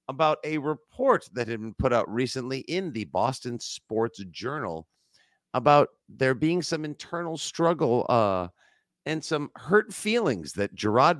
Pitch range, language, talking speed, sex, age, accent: 85-120 Hz, English, 145 wpm, male, 50-69, American